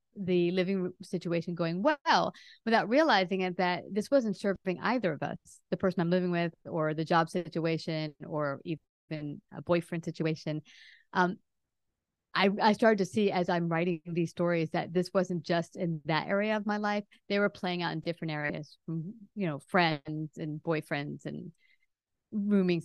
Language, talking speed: English, 175 wpm